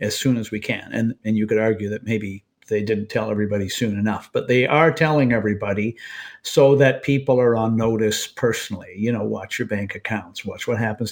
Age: 50-69